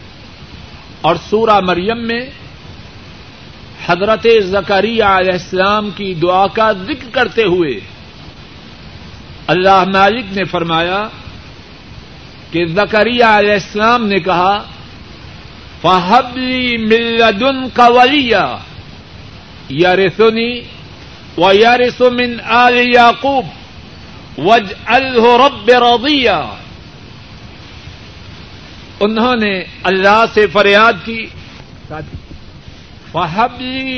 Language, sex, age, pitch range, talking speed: Urdu, male, 60-79, 180-240 Hz, 80 wpm